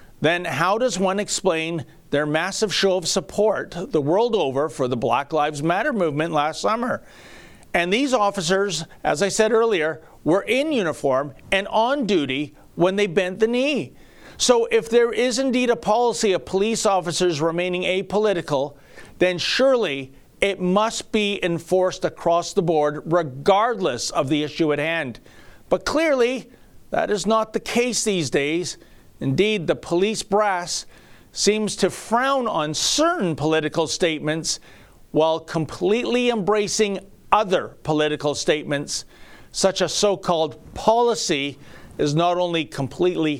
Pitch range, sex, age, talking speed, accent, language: 155-215 Hz, male, 50-69, 140 wpm, American, English